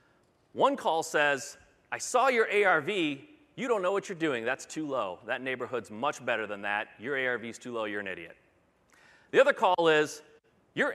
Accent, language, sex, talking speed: American, English, male, 185 wpm